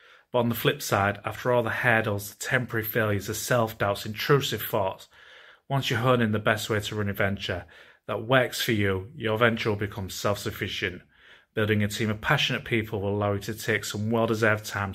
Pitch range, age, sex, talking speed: 105-120 Hz, 30-49, male, 215 wpm